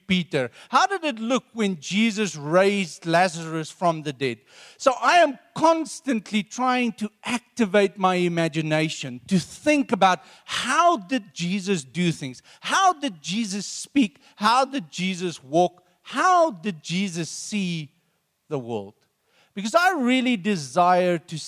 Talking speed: 135 wpm